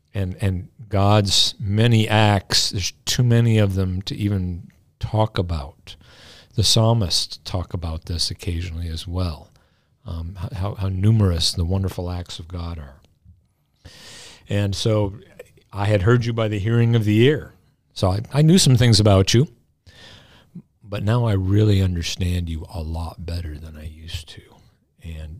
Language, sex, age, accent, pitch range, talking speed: English, male, 50-69, American, 90-110 Hz, 155 wpm